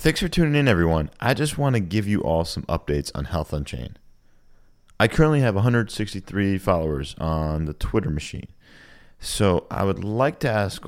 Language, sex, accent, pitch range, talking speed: English, male, American, 85-105 Hz, 175 wpm